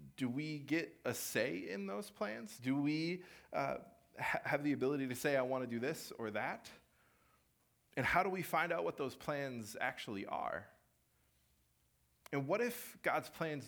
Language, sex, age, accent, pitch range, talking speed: English, male, 30-49, American, 95-145 Hz, 170 wpm